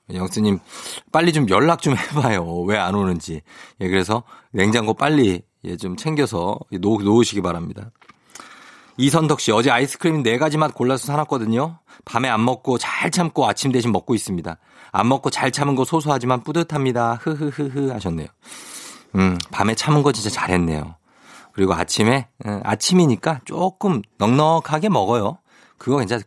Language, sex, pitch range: Korean, male, 100-160 Hz